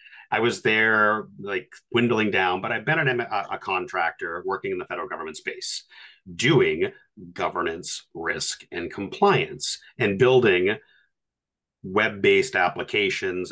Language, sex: English, male